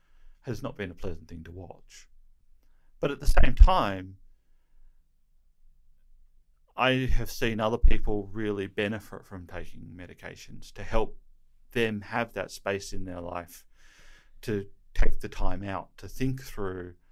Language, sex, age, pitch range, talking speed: English, male, 40-59, 85-105 Hz, 140 wpm